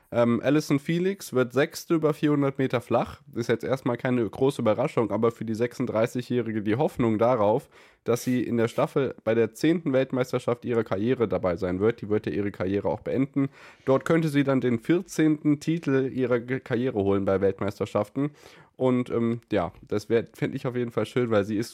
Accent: German